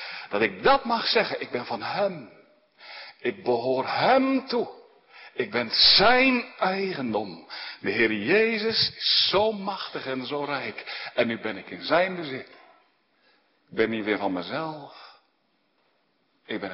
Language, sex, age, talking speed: Dutch, male, 60-79, 145 wpm